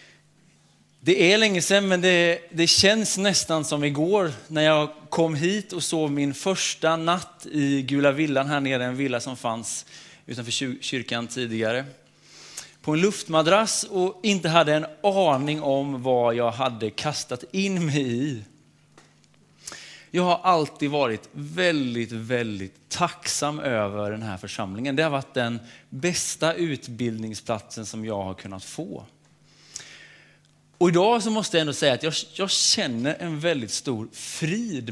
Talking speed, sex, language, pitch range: 145 wpm, male, Swedish, 125-175 Hz